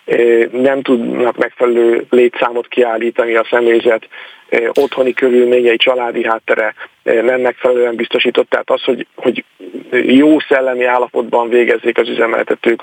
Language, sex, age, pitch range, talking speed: Hungarian, male, 40-59, 120-150 Hz, 110 wpm